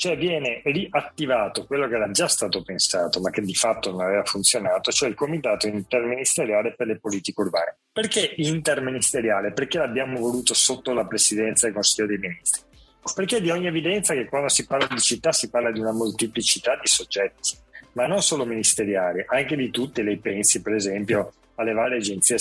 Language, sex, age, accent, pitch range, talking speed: Italian, male, 40-59, native, 110-155 Hz, 180 wpm